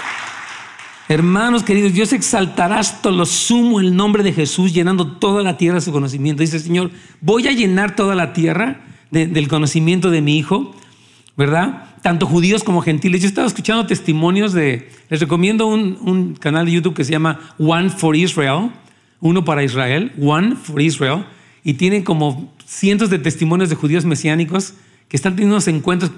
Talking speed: 175 wpm